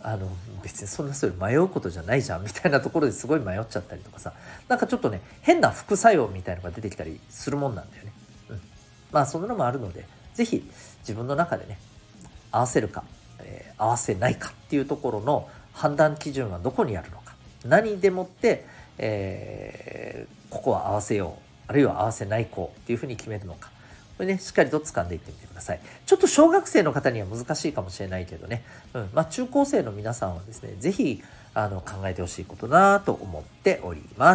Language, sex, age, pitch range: Japanese, male, 40-59, 100-155 Hz